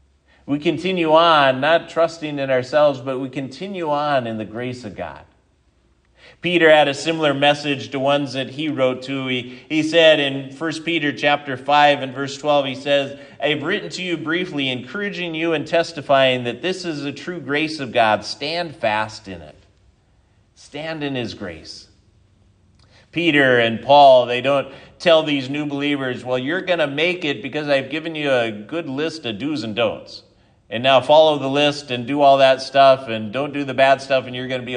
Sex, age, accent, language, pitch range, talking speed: male, 40-59, American, English, 125-150 Hz, 195 wpm